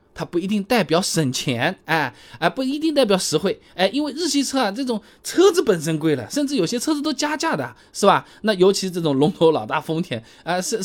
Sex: male